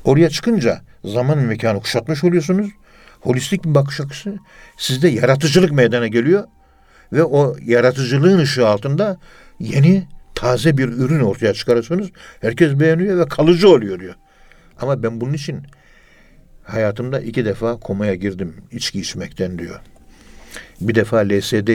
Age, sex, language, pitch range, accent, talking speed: 60-79, male, Turkish, 110-140 Hz, native, 125 wpm